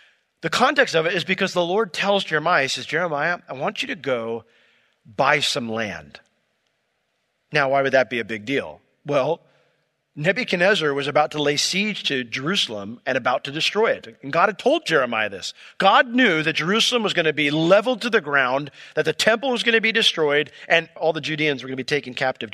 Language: English